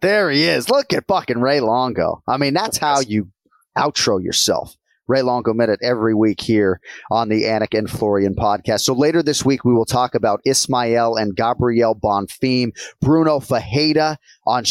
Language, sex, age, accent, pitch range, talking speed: English, male, 30-49, American, 115-145 Hz, 175 wpm